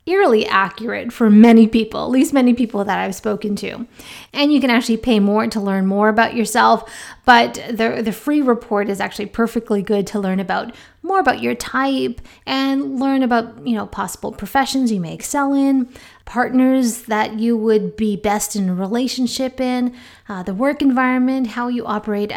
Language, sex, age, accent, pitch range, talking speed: English, female, 30-49, American, 205-260 Hz, 180 wpm